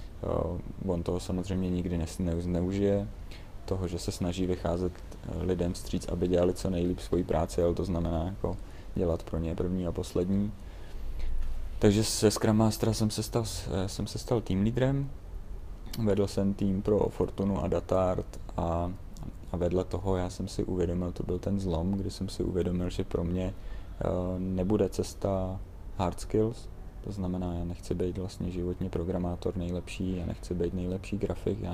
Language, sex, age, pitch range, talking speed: Czech, male, 30-49, 90-100 Hz, 165 wpm